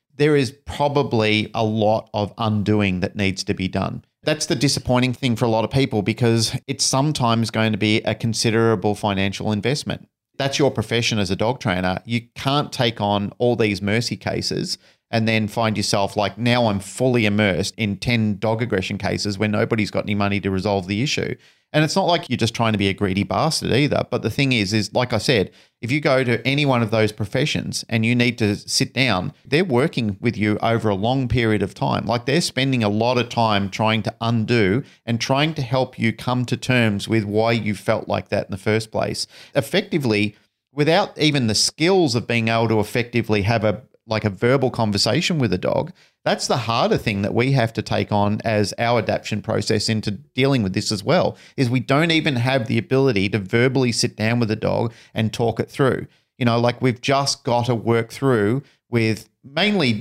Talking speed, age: 210 wpm, 40-59